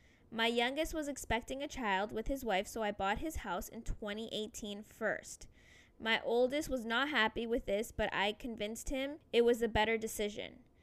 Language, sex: English, female